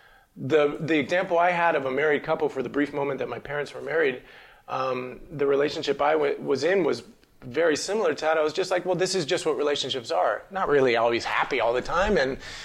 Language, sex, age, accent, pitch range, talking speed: English, male, 30-49, American, 130-180 Hz, 230 wpm